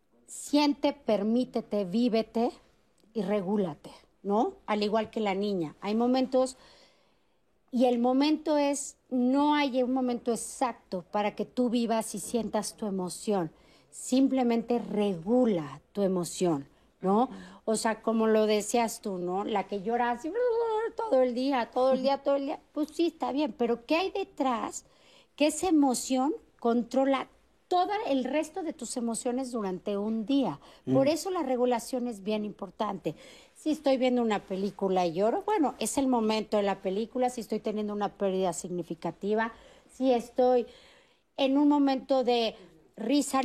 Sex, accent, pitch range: female, Mexican, 210-265 Hz